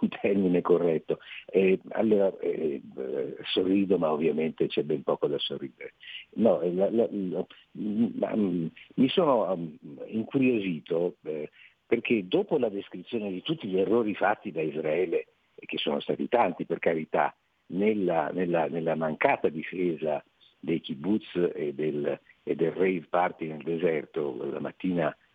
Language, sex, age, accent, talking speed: Italian, male, 50-69, native, 135 wpm